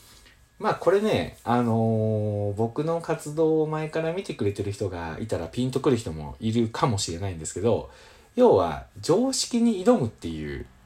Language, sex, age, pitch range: Japanese, male, 40-59, 95-160 Hz